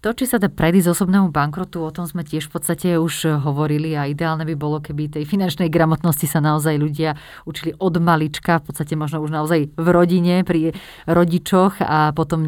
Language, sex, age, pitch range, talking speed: Slovak, female, 30-49, 150-180 Hz, 195 wpm